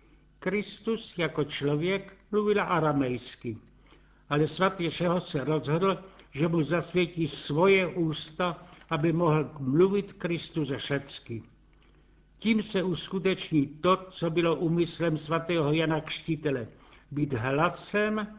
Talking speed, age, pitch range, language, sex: 105 wpm, 70-89, 145-180 Hz, Czech, male